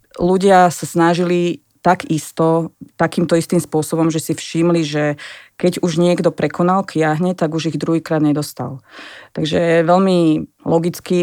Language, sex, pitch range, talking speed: Slovak, female, 160-180 Hz, 140 wpm